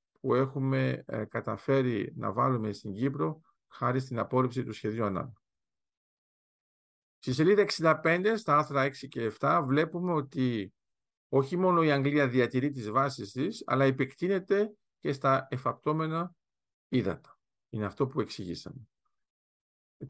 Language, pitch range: Greek, 130-170 Hz